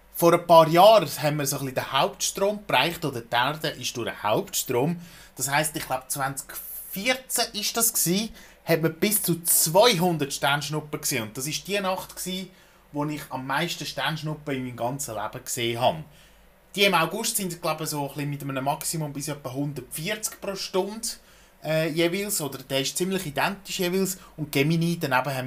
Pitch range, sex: 135-185 Hz, male